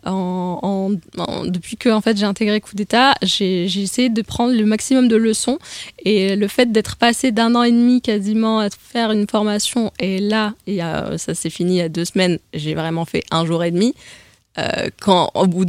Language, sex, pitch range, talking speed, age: French, female, 170-205 Hz, 220 wpm, 20-39